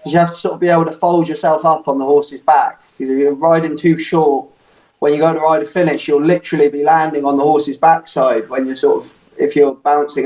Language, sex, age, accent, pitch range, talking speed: English, male, 20-39, British, 140-160 Hz, 250 wpm